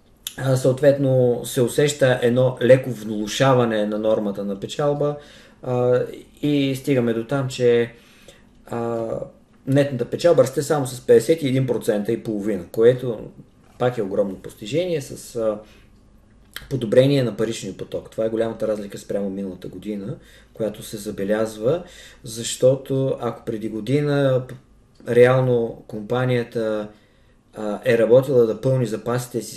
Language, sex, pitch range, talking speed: Bulgarian, male, 105-130 Hz, 120 wpm